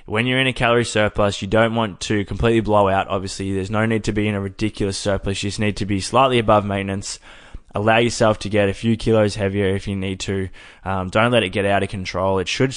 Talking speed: 250 wpm